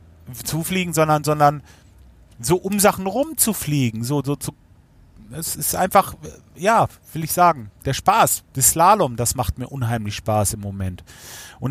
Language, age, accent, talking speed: German, 40-59, German, 160 wpm